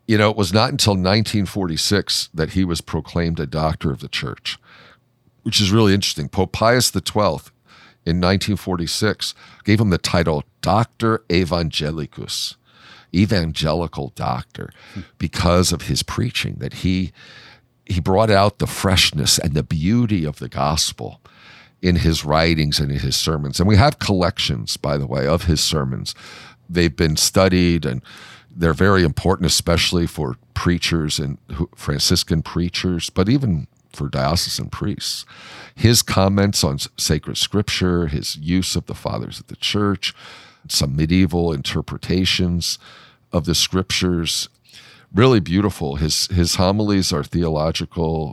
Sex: male